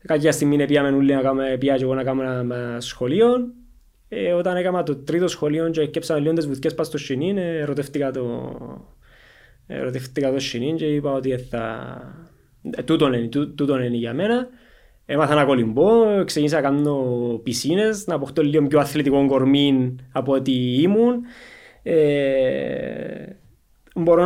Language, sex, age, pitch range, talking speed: Greek, male, 20-39, 135-160 Hz, 135 wpm